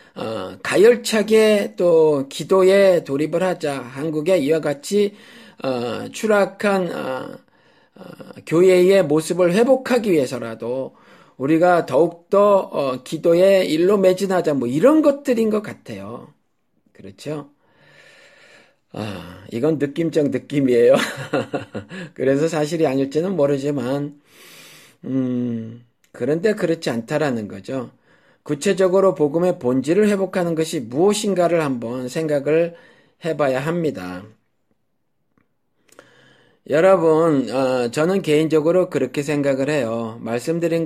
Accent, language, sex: native, Korean, male